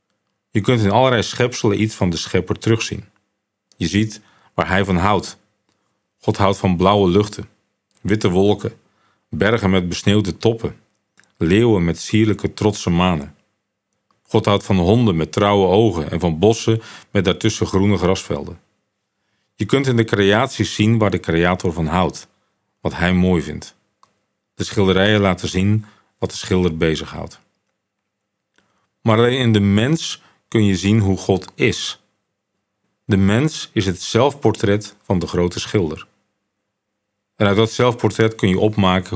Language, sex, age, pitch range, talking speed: Dutch, male, 40-59, 95-105 Hz, 145 wpm